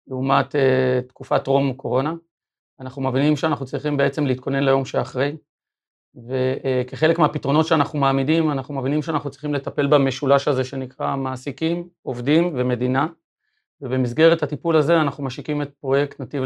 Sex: male